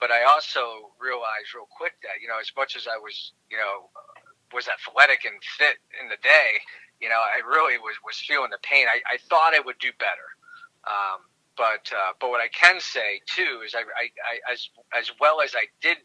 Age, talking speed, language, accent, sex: 40-59, 215 wpm, English, American, male